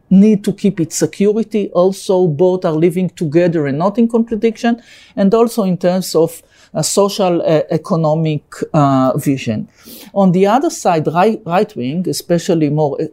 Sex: male